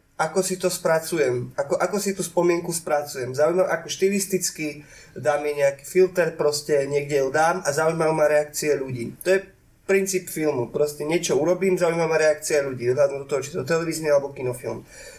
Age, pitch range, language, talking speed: 20-39, 145-180 Hz, Slovak, 180 wpm